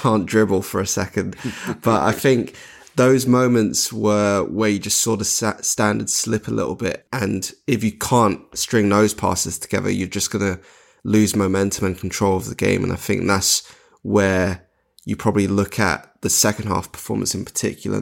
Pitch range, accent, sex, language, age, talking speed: 95-105 Hz, British, male, English, 20-39, 185 wpm